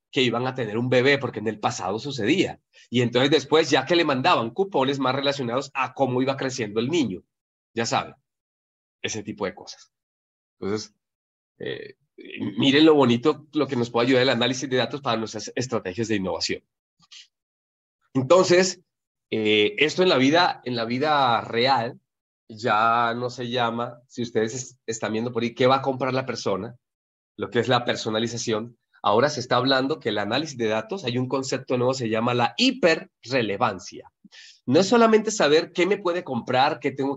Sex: male